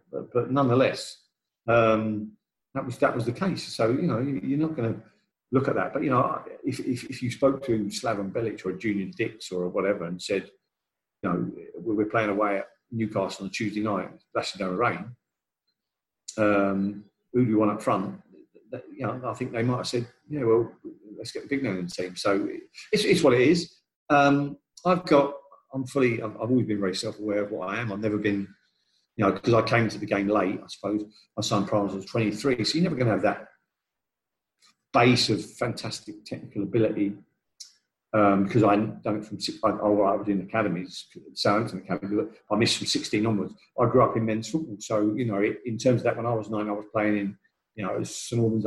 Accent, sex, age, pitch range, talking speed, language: British, male, 40-59, 105-125 Hz, 215 wpm, English